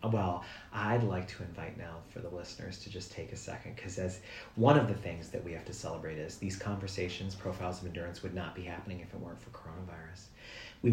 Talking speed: 225 wpm